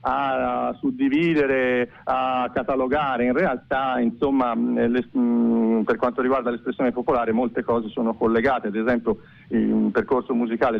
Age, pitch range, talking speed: 40-59, 110-130 Hz, 115 wpm